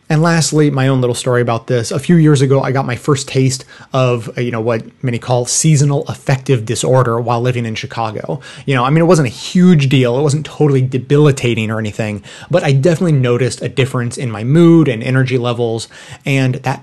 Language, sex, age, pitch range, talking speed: English, male, 30-49, 125-145 Hz, 210 wpm